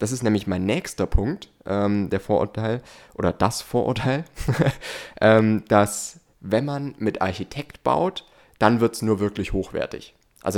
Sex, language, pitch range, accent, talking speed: male, German, 95-115 Hz, German, 145 wpm